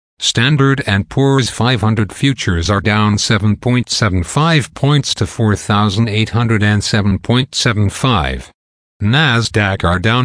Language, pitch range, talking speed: English, 100-125 Hz, 80 wpm